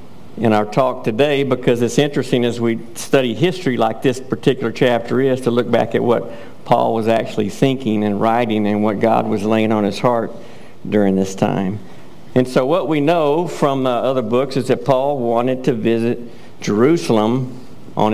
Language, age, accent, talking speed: English, 50-69, American, 180 wpm